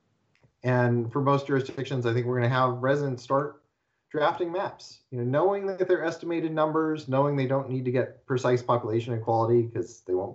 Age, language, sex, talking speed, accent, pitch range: 40-59, English, male, 190 wpm, American, 110-135 Hz